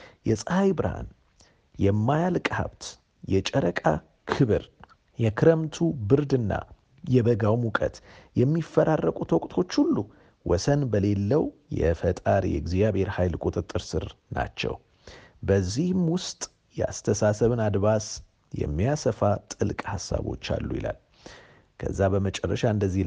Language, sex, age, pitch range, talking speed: Amharic, male, 50-69, 100-140 Hz, 85 wpm